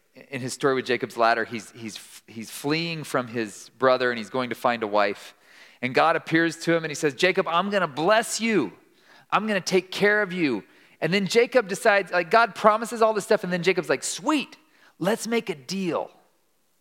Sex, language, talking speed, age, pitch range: male, English, 215 wpm, 40-59, 160-225 Hz